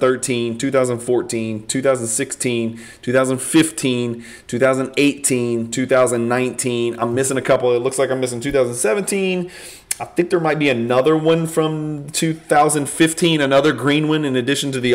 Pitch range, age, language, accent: 115-135 Hz, 30-49, English, American